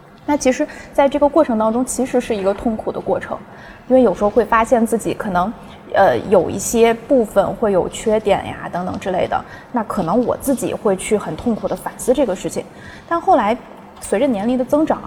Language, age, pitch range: Chinese, 20-39, 210-285 Hz